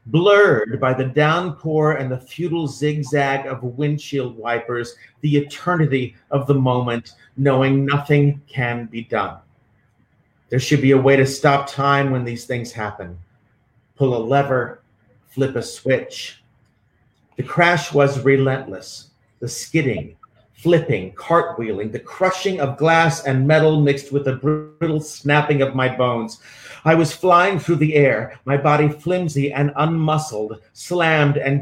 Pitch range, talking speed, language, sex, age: 125-150 Hz, 140 wpm, English, male, 40-59